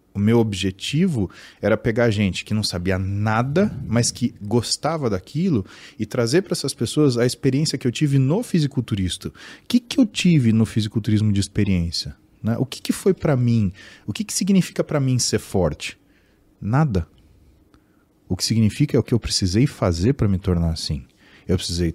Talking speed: 180 wpm